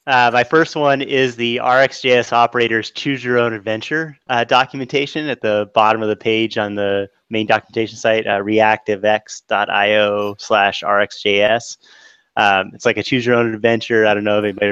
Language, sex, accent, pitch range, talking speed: English, male, American, 105-125 Hz, 170 wpm